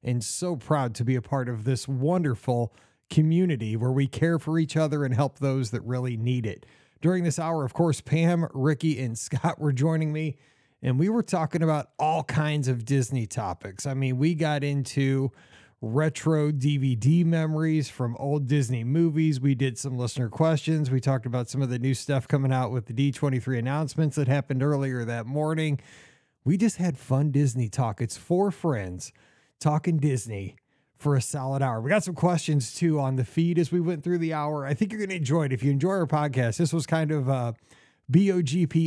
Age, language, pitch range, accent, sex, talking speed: 30-49, English, 130-160 Hz, American, male, 200 wpm